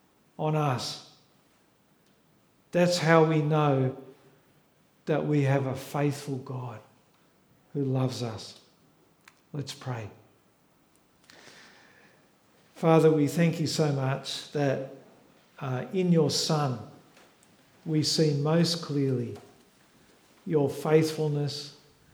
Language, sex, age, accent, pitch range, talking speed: English, male, 50-69, Australian, 130-155 Hz, 90 wpm